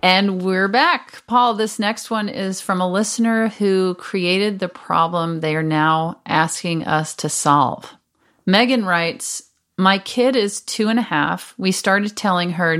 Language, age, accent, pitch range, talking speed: English, 40-59, American, 160-195 Hz, 165 wpm